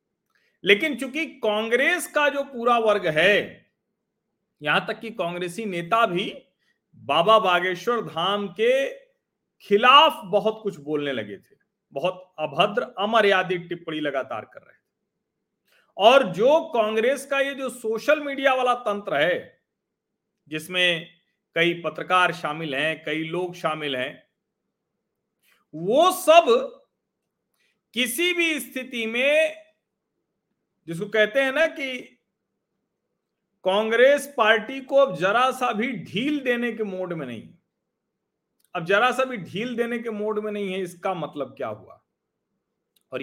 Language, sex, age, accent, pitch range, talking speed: Hindi, male, 40-59, native, 175-245 Hz, 130 wpm